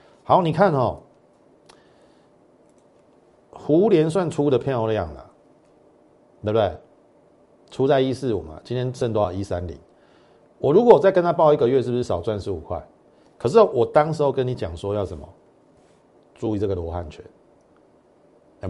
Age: 50-69